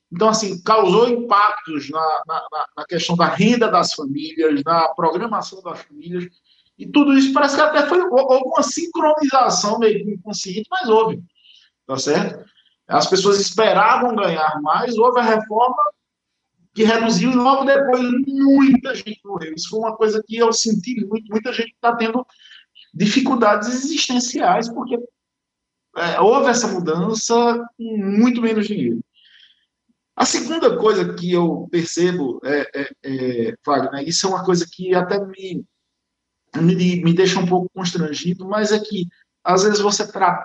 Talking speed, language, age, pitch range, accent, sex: 150 wpm, Portuguese, 50-69, 175-235 Hz, Brazilian, male